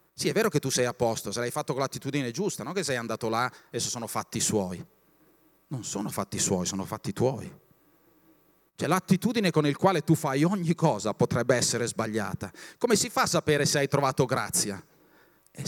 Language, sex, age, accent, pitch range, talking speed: Italian, male, 40-59, native, 115-155 Hz, 205 wpm